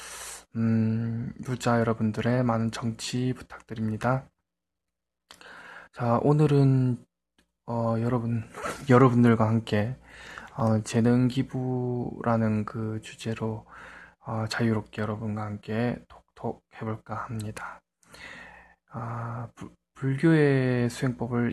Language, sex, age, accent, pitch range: Korean, male, 20-39, native, 110-130 Hz